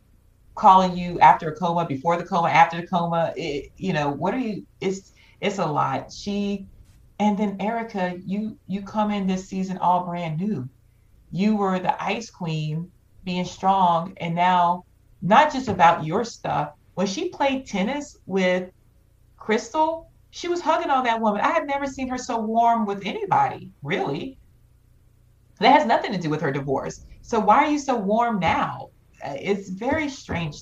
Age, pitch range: 30-49, 145-200 Hz